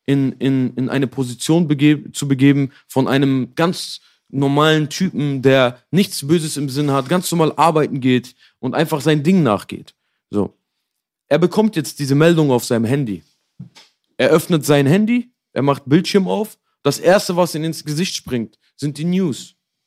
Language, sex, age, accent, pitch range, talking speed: German, male, 40-59, German, 125-150 Hz, 165 wpm